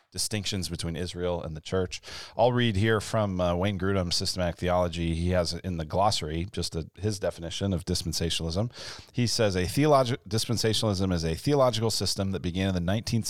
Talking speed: 180 wpm